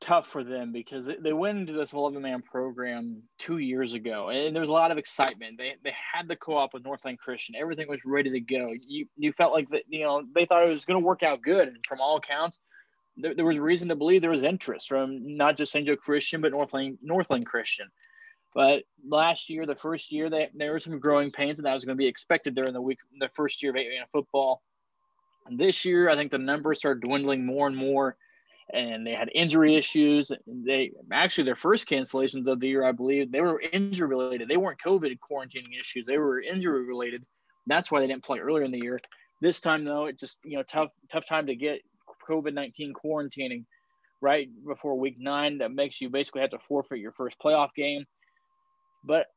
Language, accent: English, American